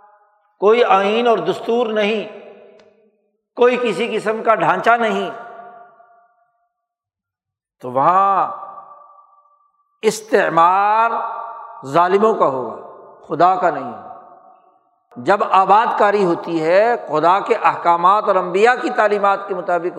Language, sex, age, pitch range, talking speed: Urdu, male, 60-79, 190-255 Hz, 100 wpm